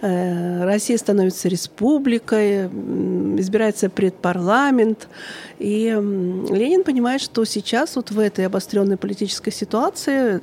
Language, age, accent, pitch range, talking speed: Russian, 50-69, native, 200-270 Hz, 90 wpm